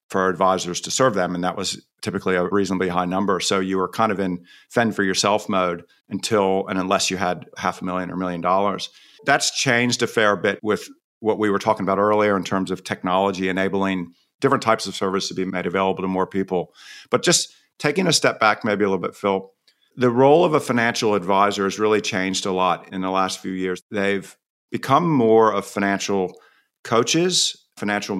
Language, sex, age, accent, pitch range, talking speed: English, male, 50-69, American, 95-110 Hz, 205 wpm